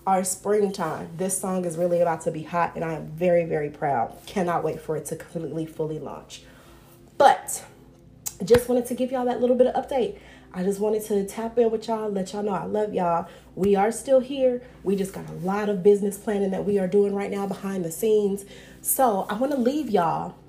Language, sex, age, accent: English, female, 30-49, American